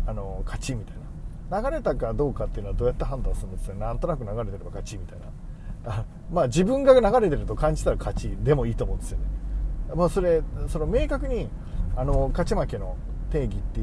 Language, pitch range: Japanese, 115-175 Hz